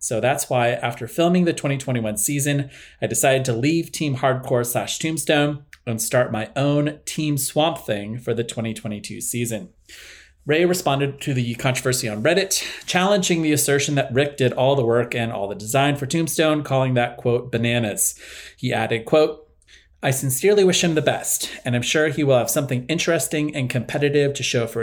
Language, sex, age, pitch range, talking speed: English, male, 30-49, 120-150 Hz, 180 wpm